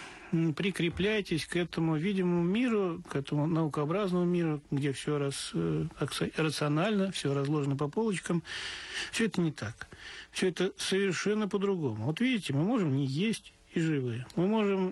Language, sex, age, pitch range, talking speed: Russian, male, 50-69, 145-185 Hz, 145 wpm